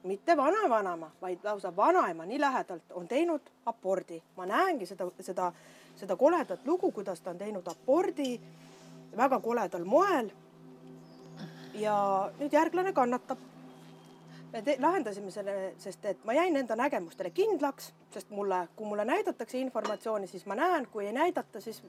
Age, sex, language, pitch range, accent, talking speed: 30-49, female, English, 190-275 Hz, Finnish, 145 wpm